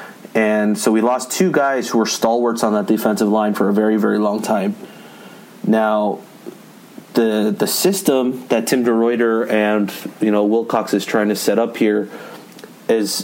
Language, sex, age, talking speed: English, male, 30-49, 170 wpm